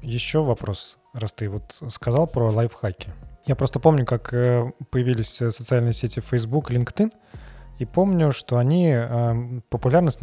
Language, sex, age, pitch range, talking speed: Russian, male, 20-39, 115-140 Hz, 130 wpm